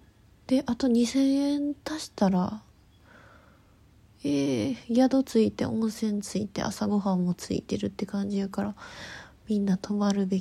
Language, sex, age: Japanese, female, 20-39